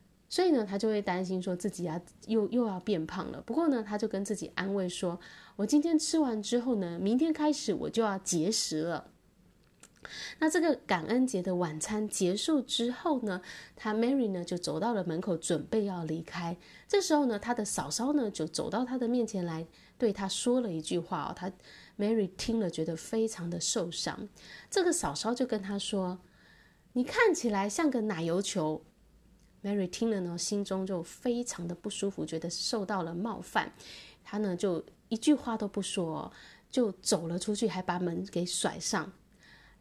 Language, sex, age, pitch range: Chinese, female, 20-39, 180-240 Hz